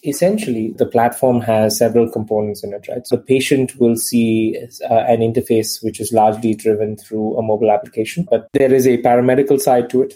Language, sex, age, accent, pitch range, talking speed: English, male, 20-39, Indian, 110-125 Hz, 195 wpm